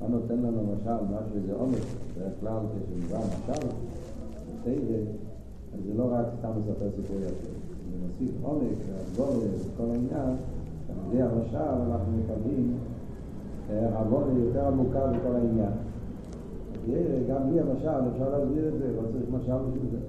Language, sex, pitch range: Hebrew, male, 95-120 Hz